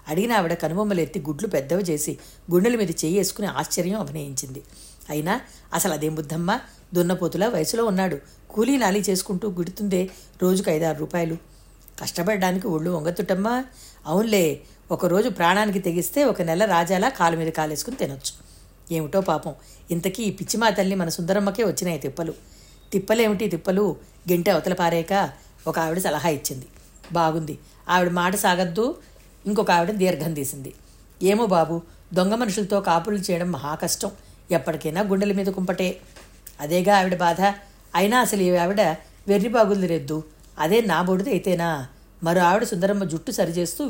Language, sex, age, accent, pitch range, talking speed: Telugu, female, 60-79, native, 165-200 Hz, 125 wpm